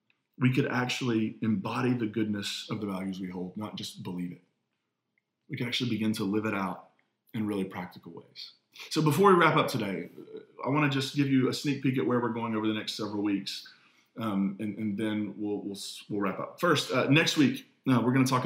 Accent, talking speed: American, 230 wpm